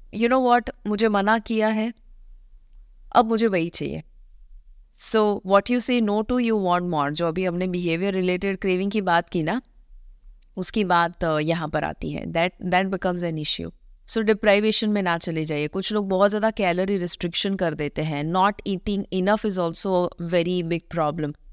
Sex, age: female, 20-39